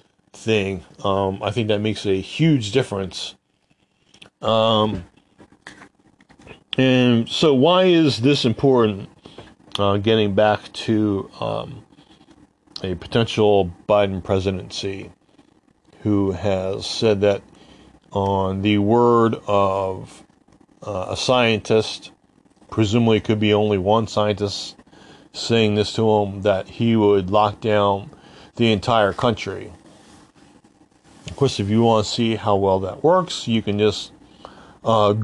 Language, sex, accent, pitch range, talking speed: English, male, American, 100-120 Hz, 120 wpm